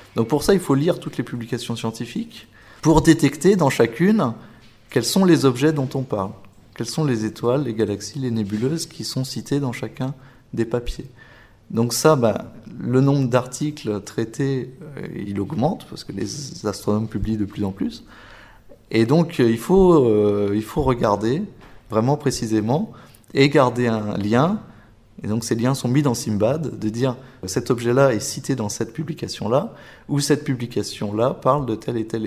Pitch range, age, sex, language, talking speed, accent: 110-140 Hz, 20-39, male, French, 170 wpm, French